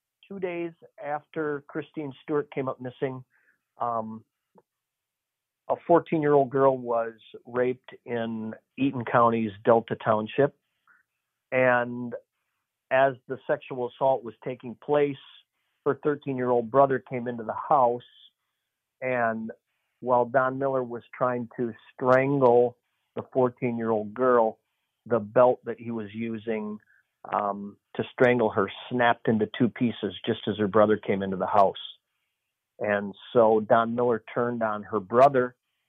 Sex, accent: male, American